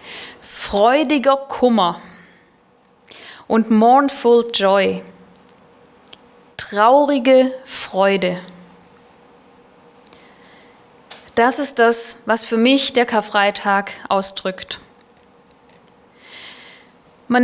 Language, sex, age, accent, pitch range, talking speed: German, female, 20-39, German, 225-260 Hz, 60 wpm